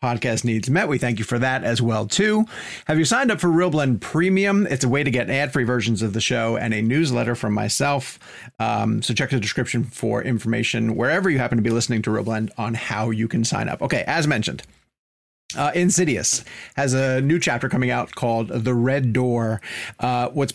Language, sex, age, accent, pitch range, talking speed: English, male, 30-49, American, 115-140 Hz, 215 wpm